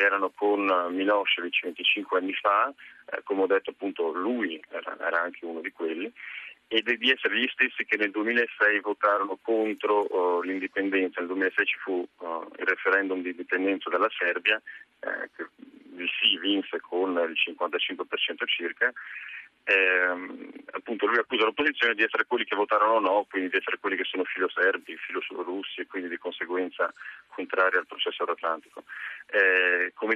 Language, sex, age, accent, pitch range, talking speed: Italian, male, 40-59, native, 90-115 Hz, 165 wpm